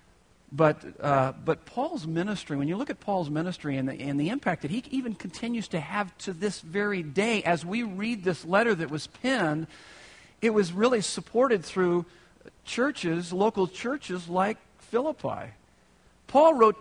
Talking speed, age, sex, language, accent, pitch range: 165 wpm, 50-69, male, English, American, 145-210 Hz